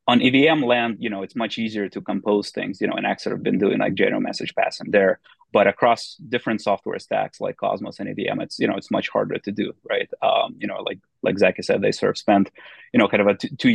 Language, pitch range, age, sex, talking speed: English, 105-130 Hz, 30-49, male, 260 wpm